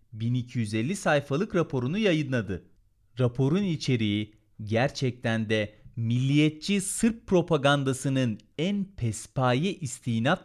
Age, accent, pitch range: 40-59, native, 115-170 Hz